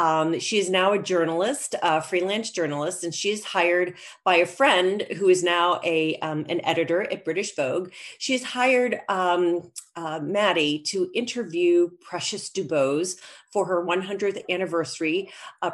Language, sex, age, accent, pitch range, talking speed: English, female, 40-59, American, 150-190 Hz, 155 wpm